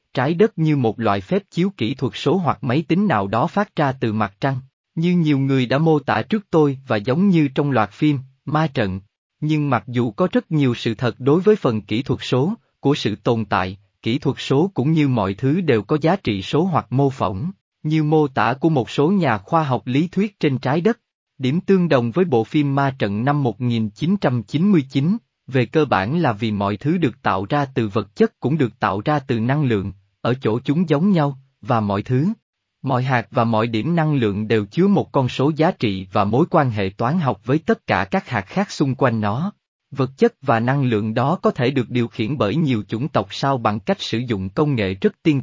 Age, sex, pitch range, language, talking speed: 20-39, male, 115-160 Hz, Vietnamese, 230 wpm